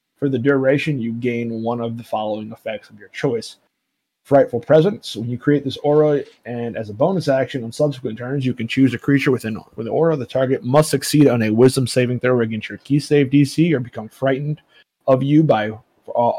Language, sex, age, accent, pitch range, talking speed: English, male, 20-39, American, 115-145 Hz, 215 wpm